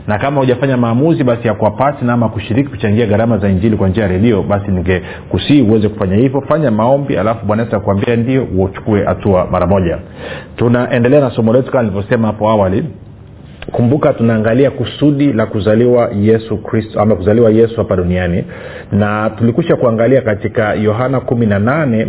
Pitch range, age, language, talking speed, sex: 105-130 Hz, 40-59, Swahili, 150 wpm, male